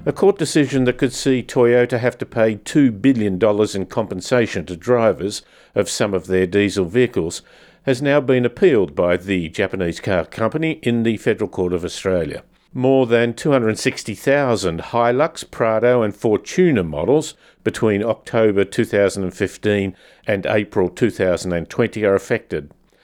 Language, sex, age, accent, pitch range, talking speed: English, male, 50-69, Australian, 100-135 Hz, 140 wpm